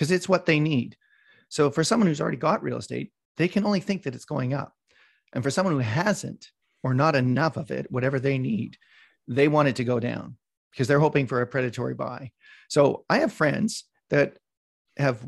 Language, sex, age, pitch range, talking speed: English, male, 40-59, 125-170 Hz, 210 wpm